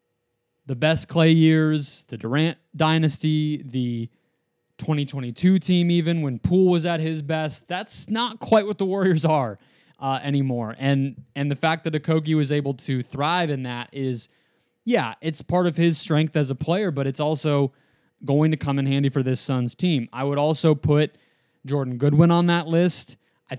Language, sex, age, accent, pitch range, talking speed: English, male, 20-39, American, 135-160 Hz, 180 wpm